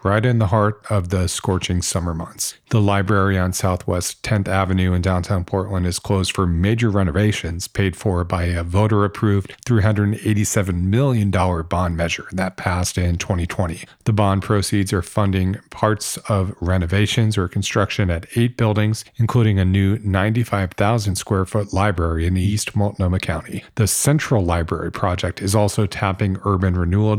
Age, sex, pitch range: 40-59, male, 95-110 Hz